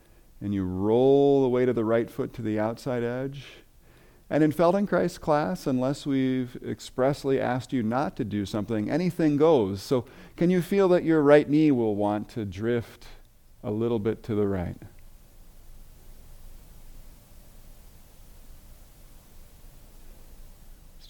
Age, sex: 50-69, male